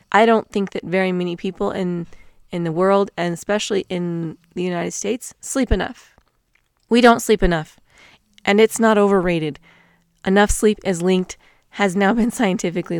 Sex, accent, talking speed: female, American, 160 wpm